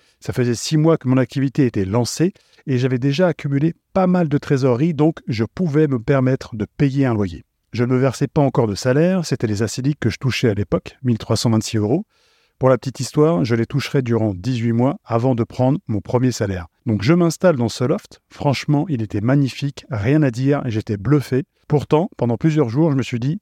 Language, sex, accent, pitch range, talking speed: French, male, French, 120-150 Hz, 215 wpm